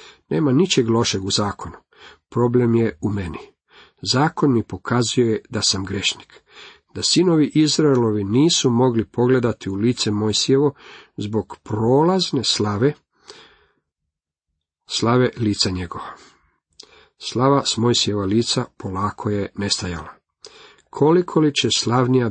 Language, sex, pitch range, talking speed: Croatian, male, 105-130 Hz, 110 wpm